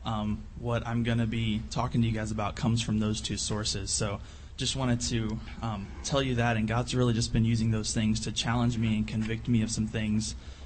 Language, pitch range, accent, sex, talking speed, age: English, 105-125 Hz, American, male, 230 wpm, 20-39